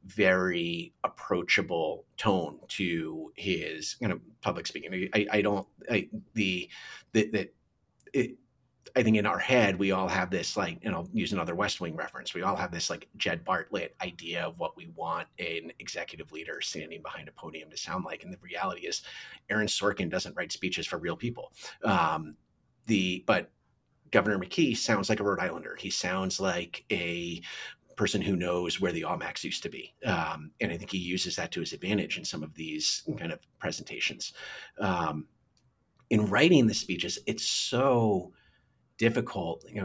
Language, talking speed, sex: English, 185 wpm, male